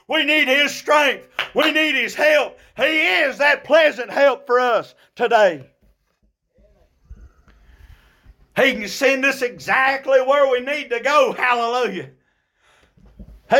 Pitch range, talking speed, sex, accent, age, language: 220-295 Hz, 125 wpm, male, American, 50-69, English